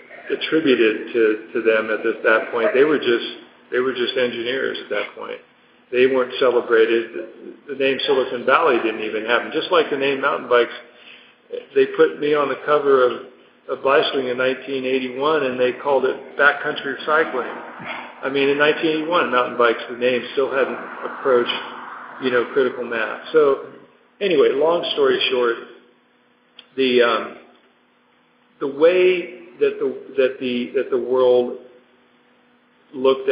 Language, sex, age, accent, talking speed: German, male, 50-69, American, 150 wpm